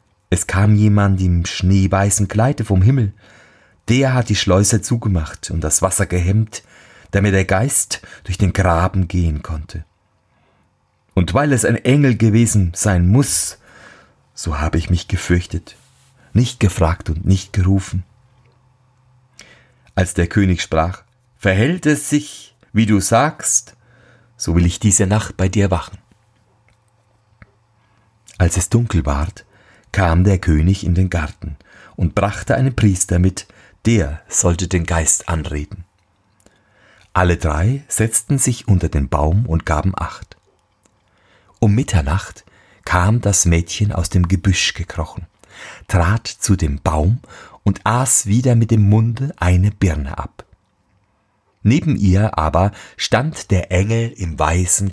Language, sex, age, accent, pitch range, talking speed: German, male, 30-49, German, 90-110 Hz, 130 wpm